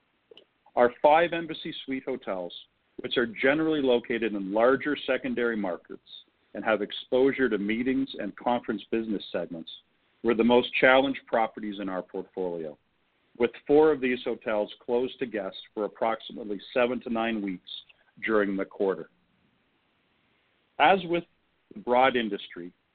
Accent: American